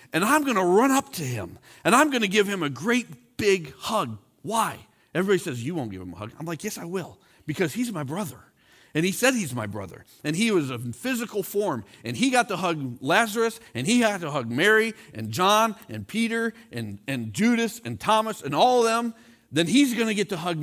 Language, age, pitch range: English, 40-59, 135-225 Hz